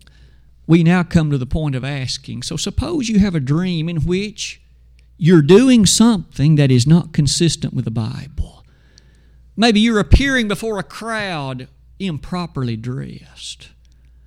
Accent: American